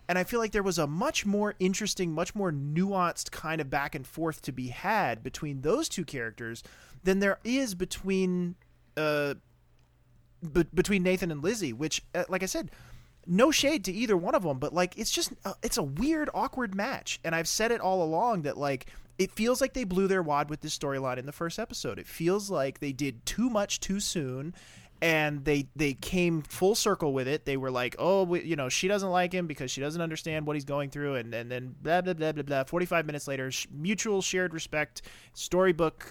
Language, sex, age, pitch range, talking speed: English, male, 30-49, 135-190 Hz, 220 wpm